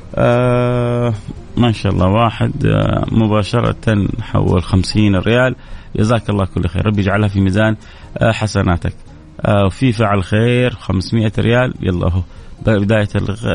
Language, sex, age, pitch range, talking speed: Arabic, male, 30-49, 100-125 Hz, 125 wpm